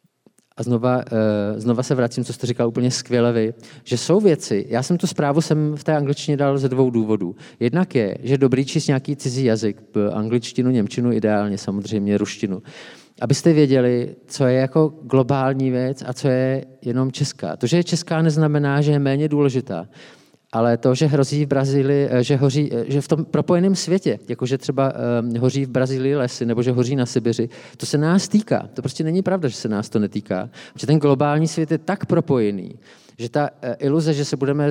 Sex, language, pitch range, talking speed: male, Czech, 120-145 Hz, 190 wpm